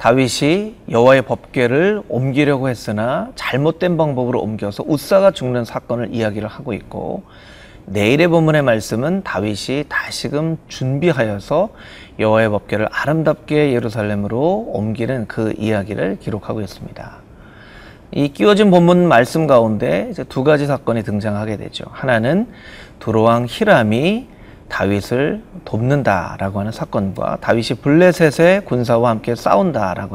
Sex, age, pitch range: male, 30-49, 110-155 Hz